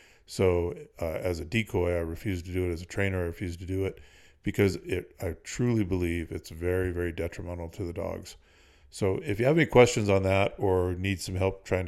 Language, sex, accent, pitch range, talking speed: English, male, American, 90-100 Hz, 215 wpm